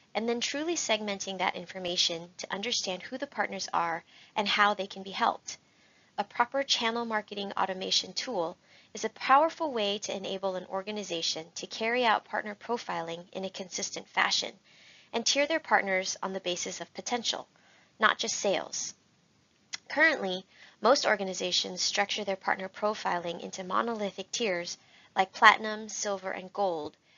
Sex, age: female, 20-39